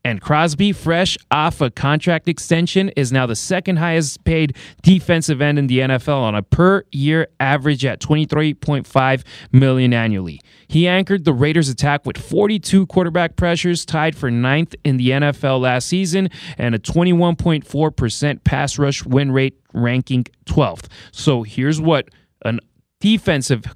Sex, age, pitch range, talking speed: male, 30-49, 130-170 Hz, 145 wpm